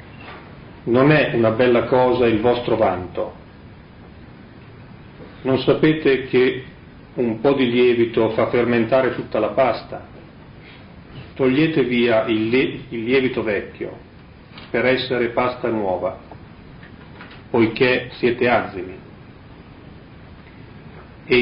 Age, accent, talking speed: 40-59, native, 90 wpm